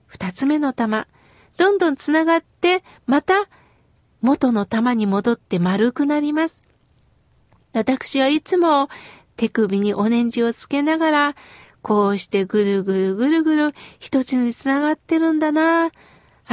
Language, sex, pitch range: Japanese, female, 250-330 Hz